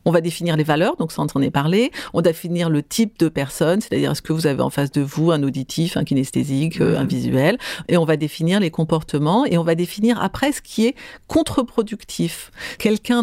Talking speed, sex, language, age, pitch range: 220 wpm, female, French, 50-69, 155-205 Hz